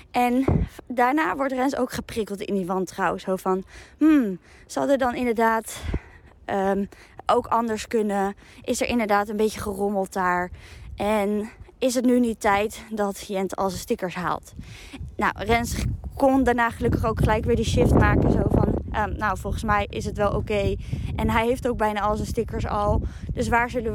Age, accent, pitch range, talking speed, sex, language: 20-39, Dutch, 200-245 Hz, 185 wpm, female, Dutch